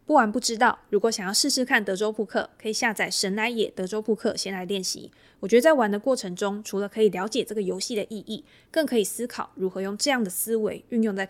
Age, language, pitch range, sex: 20-39, Chinese, 190-225 Hz, female